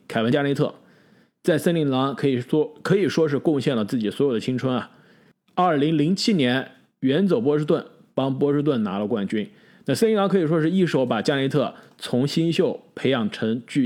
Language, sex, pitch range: Chinese, male, 130-180 Hz